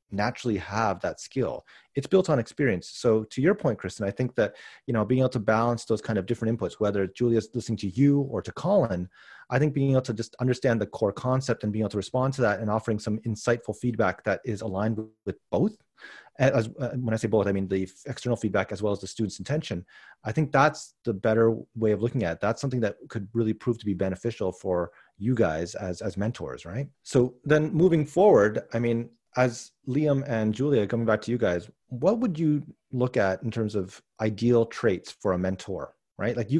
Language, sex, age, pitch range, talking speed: English, male, 30-49, 100-130 Hz, 225 wpm